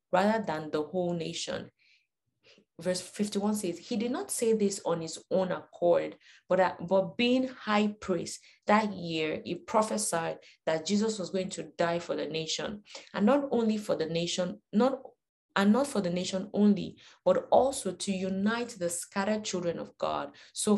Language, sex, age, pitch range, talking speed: English, female, 20-39, 170-210 Hz, 170 wpm